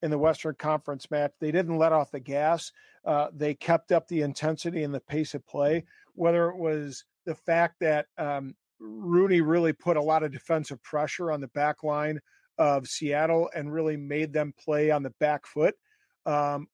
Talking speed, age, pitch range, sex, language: 190 wpm, 50-69, 150-170 Hz, male, English